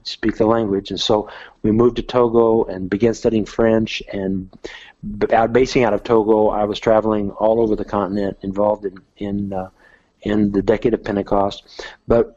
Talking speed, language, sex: 175 wpm, English, male